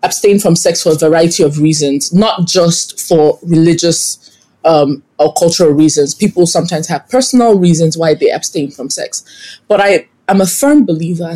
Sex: female